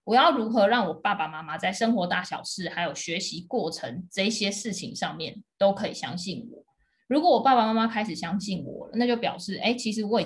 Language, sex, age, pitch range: Chinese, female, 20-39, 185-235 Hz